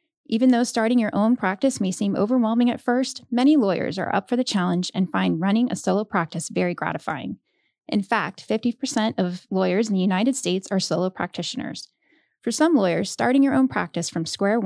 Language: English